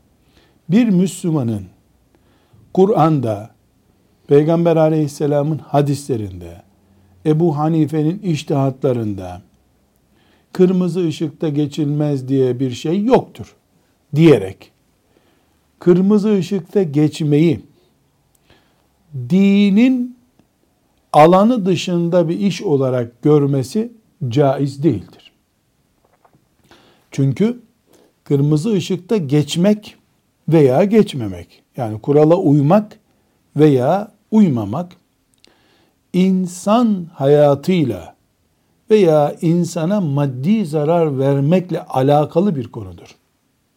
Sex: male